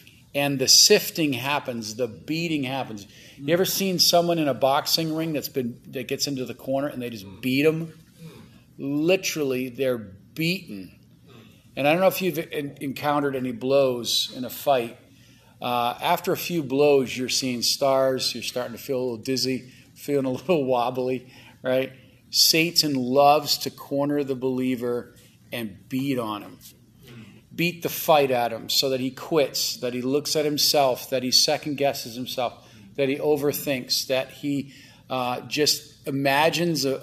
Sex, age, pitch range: male, 40-59, 125-150 Hz